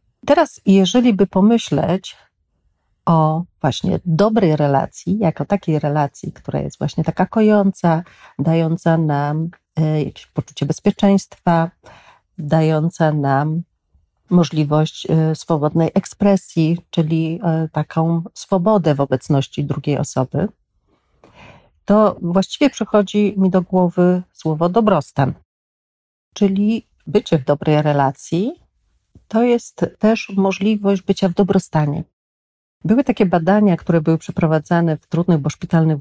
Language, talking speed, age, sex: Polish, 105 wpm, 40-59, female